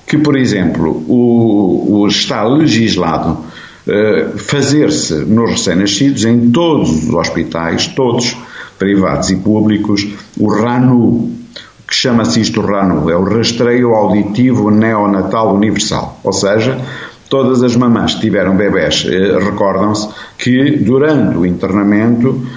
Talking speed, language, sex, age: 115 wpm, Portuguese, male, 50-69